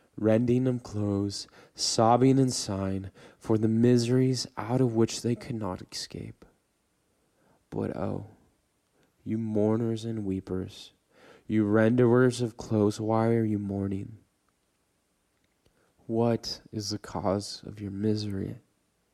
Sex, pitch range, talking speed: male, 105-120 Hz, 115 wpm